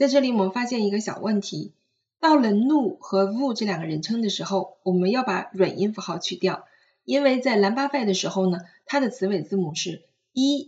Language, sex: Chinese, female